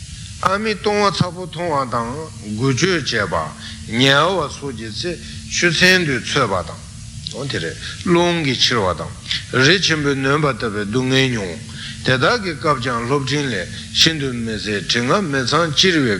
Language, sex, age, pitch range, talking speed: Italian, male, 60-79, 110-150 Hz, 120 wpm